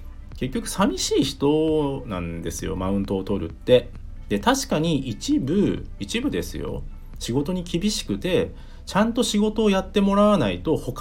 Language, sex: Japanese, male